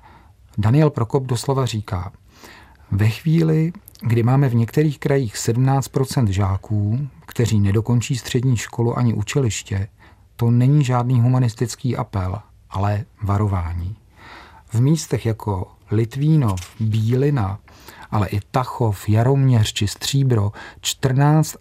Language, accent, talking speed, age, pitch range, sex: Czech, native, 105 wpm, 40-59, 100-130 Hz, male